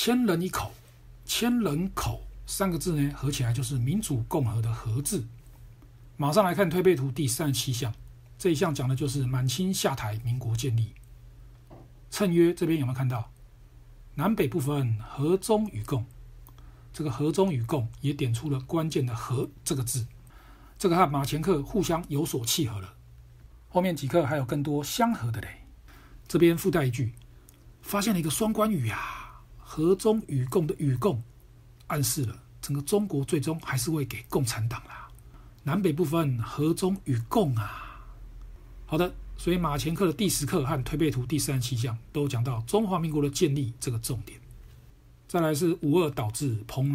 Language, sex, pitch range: Chinese, male, 120-160 Hz